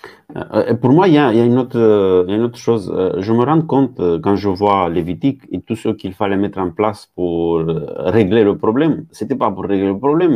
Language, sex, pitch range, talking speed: French, male, 95-130 Hz, 250 wpm